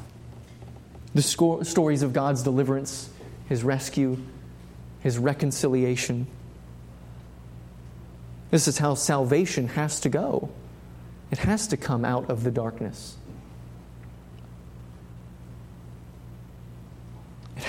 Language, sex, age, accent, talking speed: English, male, 30-49, American, 85 wpm